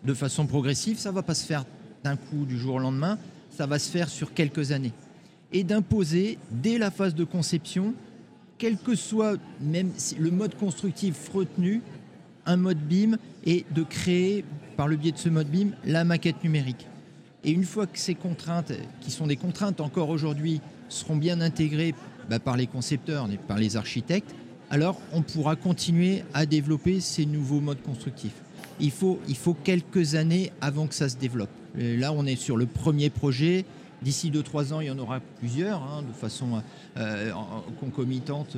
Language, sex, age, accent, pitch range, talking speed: French, male, 50-69, French, 140-180 Hz, 185 wpm